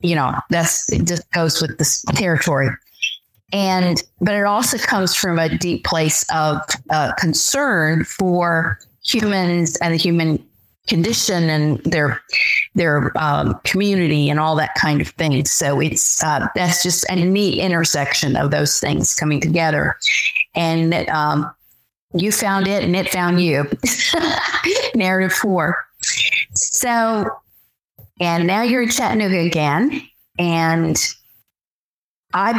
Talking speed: 135 wpm